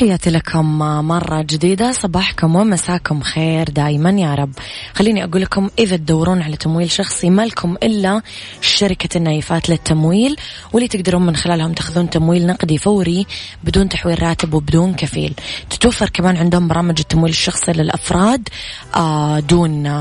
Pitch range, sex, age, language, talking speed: 155-185 Hz, female, 20-39, Arabic, 135 wpm